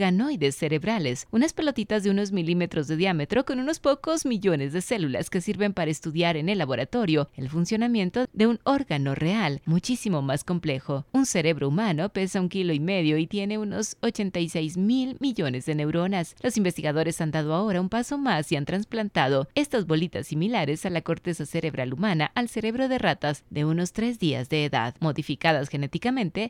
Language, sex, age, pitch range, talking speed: Spanish, female, 30-49, 155-220 Hz, 175 wpm